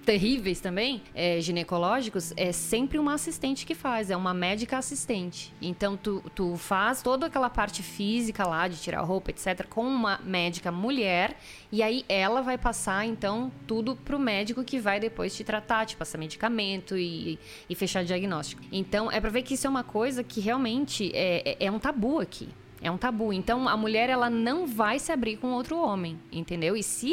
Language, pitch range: Portuguese, 185-235 Hz